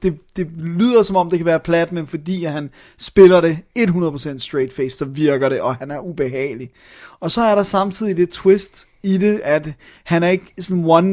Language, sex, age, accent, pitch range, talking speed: Danish, male, 30-49, native, 150-190 Hz, 215 wpm